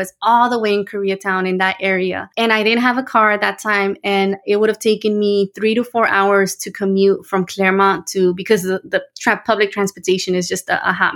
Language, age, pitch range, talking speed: English, 20-39, 195-225 Hz, 220 wpm